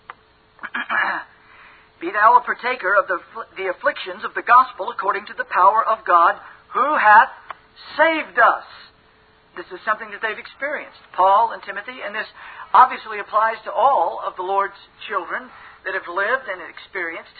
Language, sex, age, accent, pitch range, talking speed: English, male, 50-69, American, 225-325 Hz, 155 wpm